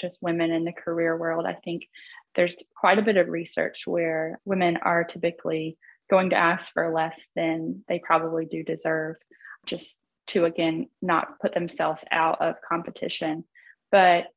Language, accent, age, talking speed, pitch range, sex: English, American, 20-39, 160 wpm, 165-195 Hz, female